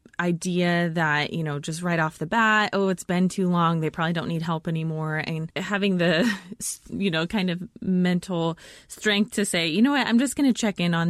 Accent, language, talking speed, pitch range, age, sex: American, English, 220 wpm, 160-195 Hz, 20-39, female